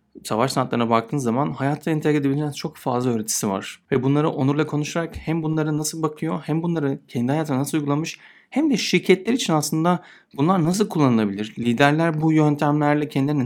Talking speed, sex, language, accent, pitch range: 165 wpm, male, Turkish, native, 115-150 Hz